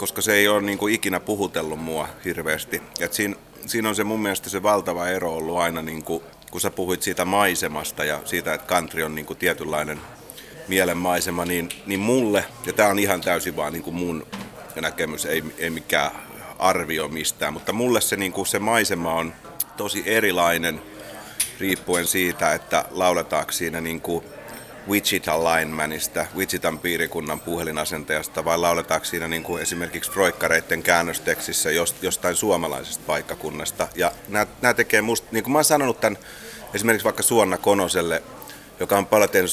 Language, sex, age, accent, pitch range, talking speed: Finnish, male, 30-49, native, 85-105 Hz, 160 wpm